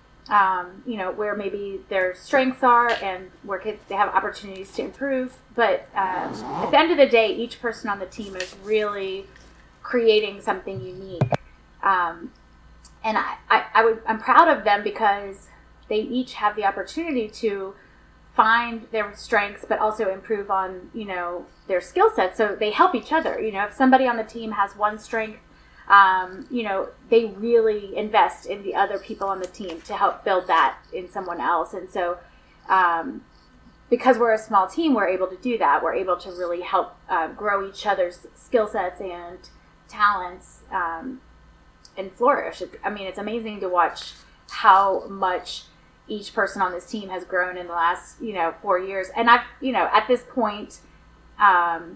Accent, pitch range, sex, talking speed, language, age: American, 185-225 Hz, female, 180 wpm, English, 30-49